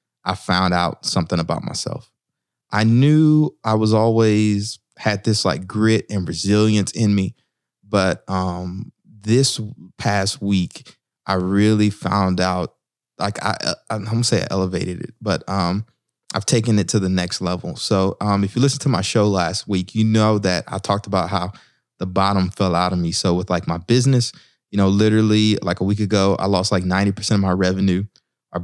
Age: 20-39